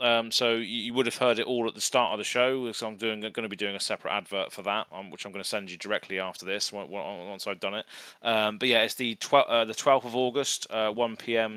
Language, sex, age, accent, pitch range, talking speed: English, male, 20-39, British, 100-120 Hz, 285 wpm